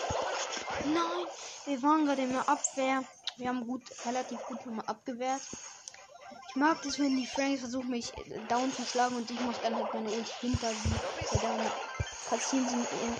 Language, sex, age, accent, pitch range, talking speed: German, female, 20-39, German, 235-280 Hz, 160 wpm